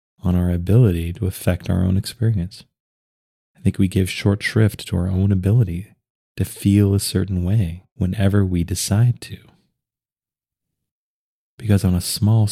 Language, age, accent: English, 30-49, American